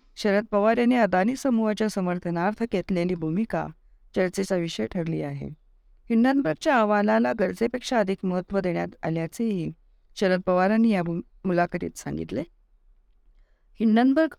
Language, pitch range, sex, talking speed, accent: Marathi, 160-220 Hz, female, 105 wpm, native